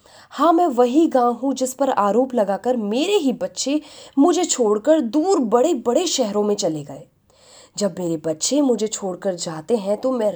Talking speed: 175 wpm